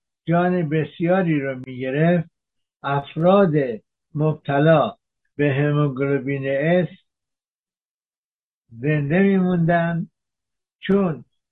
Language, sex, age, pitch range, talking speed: Persian, male, 60-79, 140-175 Hz, 65 wpm